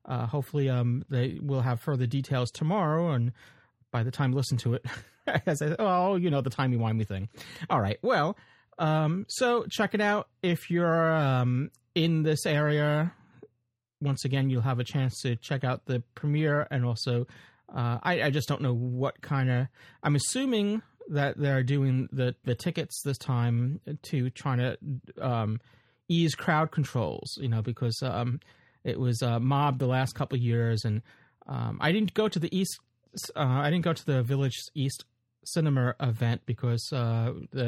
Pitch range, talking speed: 120-155 Hz, 180 wpm